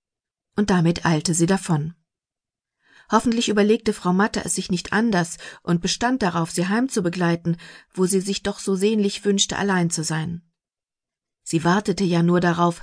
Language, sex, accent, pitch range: German, female, German, 165-205 Hz